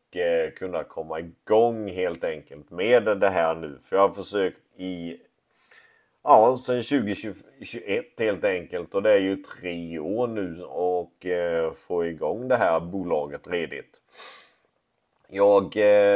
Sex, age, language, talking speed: male, 30-49, Swedish, 130 wpm